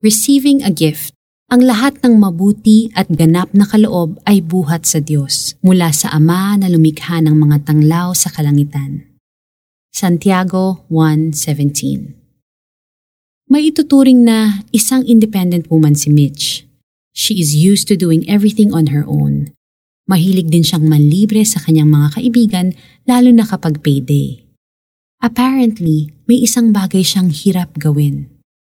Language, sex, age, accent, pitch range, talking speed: Filipino, female, 20-39, native, 150-210 Hz, 130 wpm